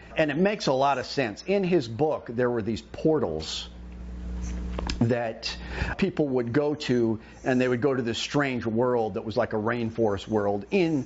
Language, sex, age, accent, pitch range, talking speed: English, male, 50-69, American, 115-145 Hz, 185 wpm